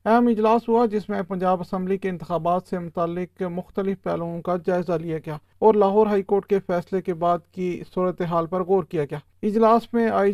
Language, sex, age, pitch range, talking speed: Urdu, male, 40-59, 180-210 Hz, 195 wpm